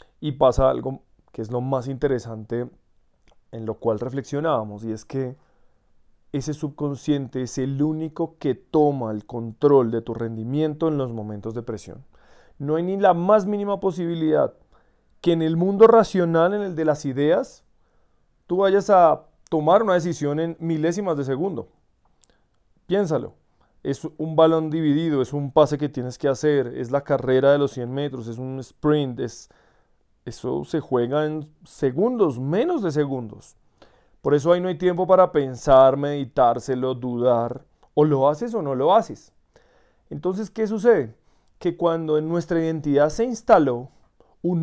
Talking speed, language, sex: 160 wpm, Spanish, male